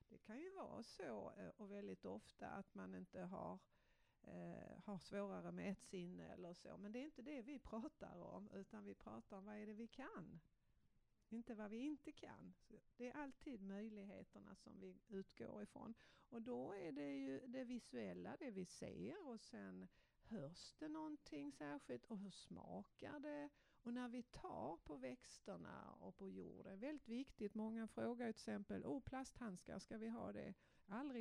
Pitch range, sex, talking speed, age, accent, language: 185-235 Hz, female, 180 wpm, 60-79, native, Swedish